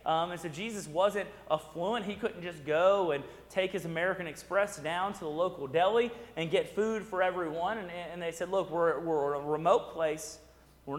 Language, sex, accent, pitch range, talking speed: English, male, American, 160-200 Hz, 195 wpm